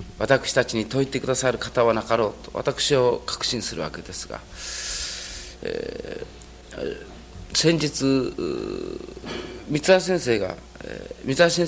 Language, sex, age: Japanese, male, 40-59